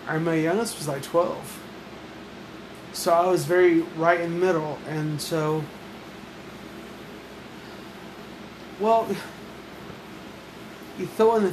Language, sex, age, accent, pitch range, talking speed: English, male, 30-49, American, 150-180 Hz, 110 wpm